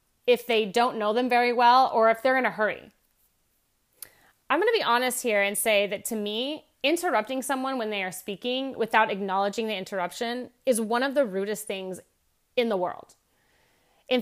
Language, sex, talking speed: English, female, 185 wpm